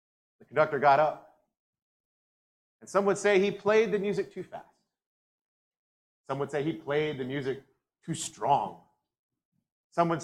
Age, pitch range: 30-49, 110-155 Hz